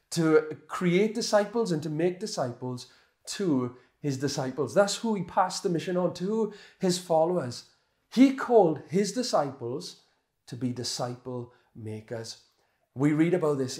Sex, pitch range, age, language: male, 135-200 Hz, 30-49, English